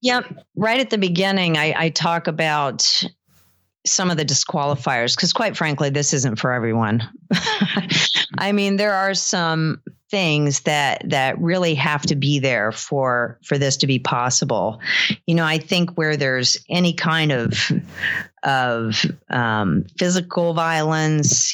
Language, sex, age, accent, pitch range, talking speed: English, female, 40-59, American, 135-165 Hz, 145 wpm